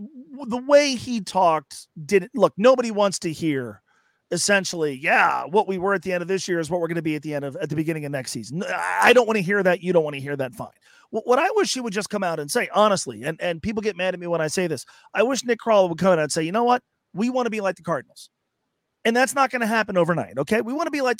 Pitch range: 155-220 Hz